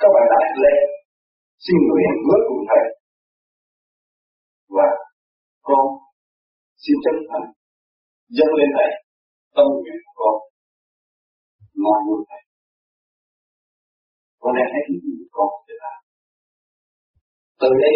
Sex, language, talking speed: male, Vietnamese, 85 wpm